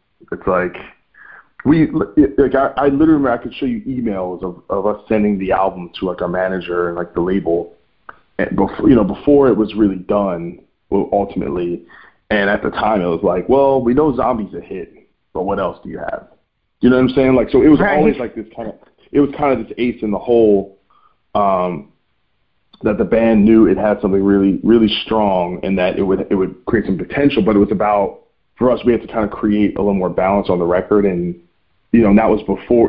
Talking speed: 230 wpm